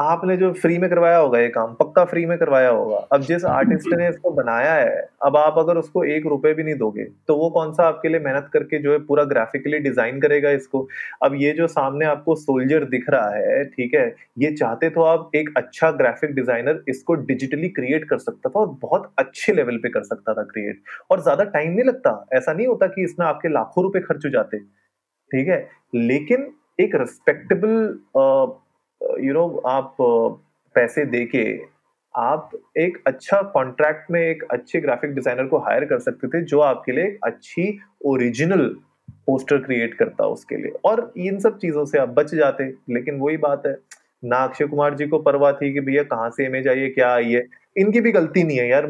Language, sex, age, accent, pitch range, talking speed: Hindi, male, 30-49, native, 135-185 Hz, 175 wpm